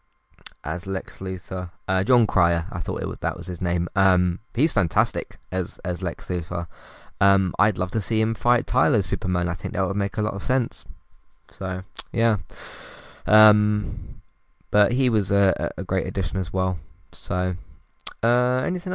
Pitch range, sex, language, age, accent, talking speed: 95-120 Hz, male, English, 20-39, British, 170 wpm